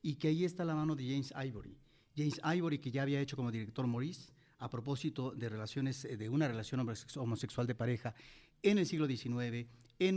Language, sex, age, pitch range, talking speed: Spanish, male, 40-59, 130-175 Hz, 190 wpm